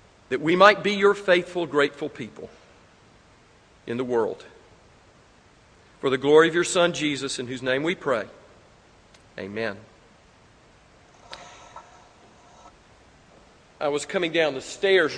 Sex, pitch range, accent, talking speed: male, 140-175 Hz, American, 120 wpm